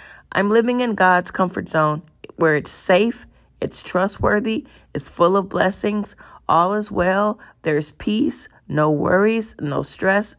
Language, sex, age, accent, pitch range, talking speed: English, female, 40-59, American, 175-210 Hz, 140 wpm